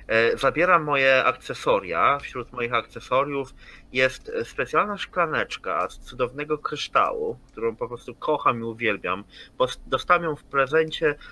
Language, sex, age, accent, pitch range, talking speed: Polish, male, 30-49, native, 125-165 Hz, 120 wpm